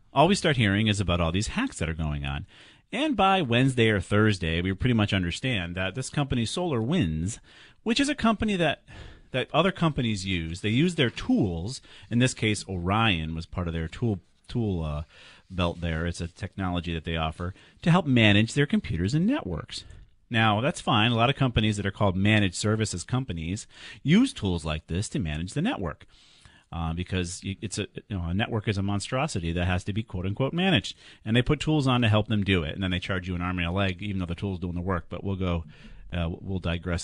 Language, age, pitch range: English, 40-59, 90-130 Hz